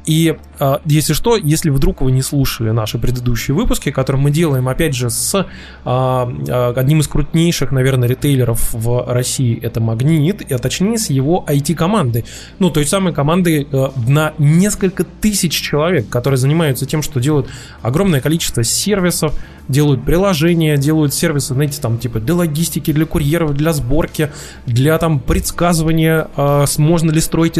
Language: Russian